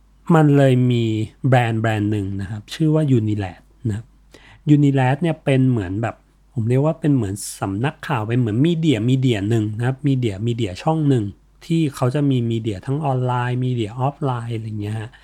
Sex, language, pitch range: male, Thai, 115-145 Hz